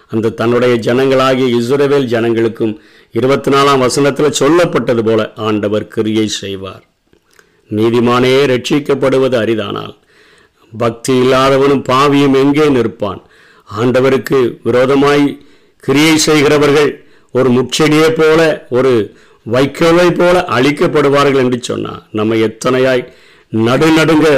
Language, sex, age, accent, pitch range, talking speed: Tamil, male, 50-69, native, 120-150 Hz, 85 wpm